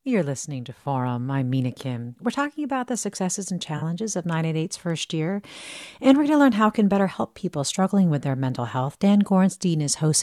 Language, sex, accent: English, female, American